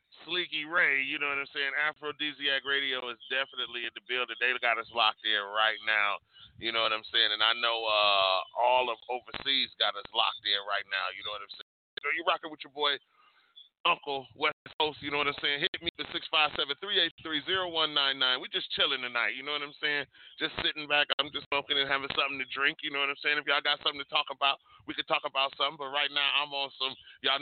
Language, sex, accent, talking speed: English, male, American, 230 wpm